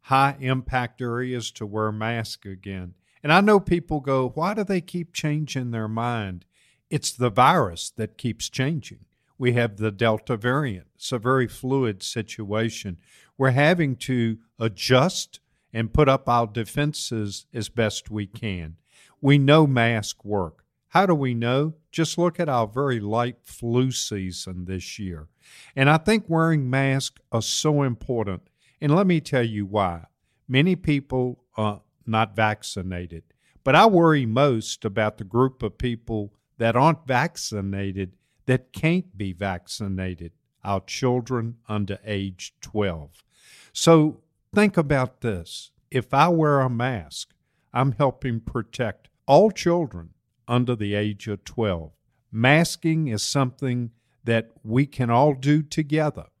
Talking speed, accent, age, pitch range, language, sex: 140 wpm, American, 50-69, 105-140 Hz, English, male